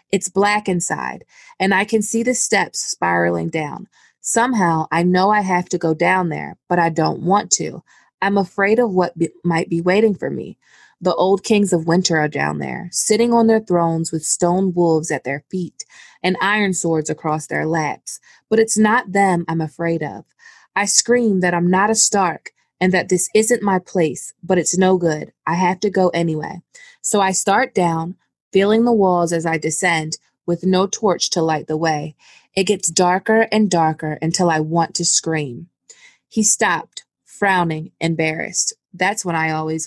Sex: female